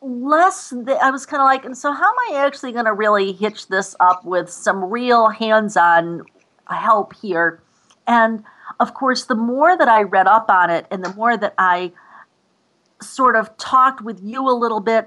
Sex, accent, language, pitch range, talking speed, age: female, American, English, 185-240 Hz, 190 wpm, 50-69